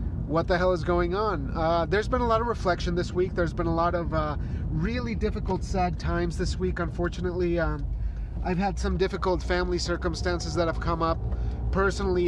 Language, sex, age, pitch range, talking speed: English, male, 30-49, 105-175 Hz, 195 wpm